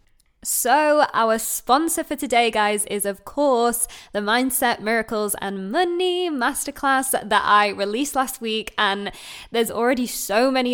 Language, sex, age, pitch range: English, female, 20-39, 195-235 Hz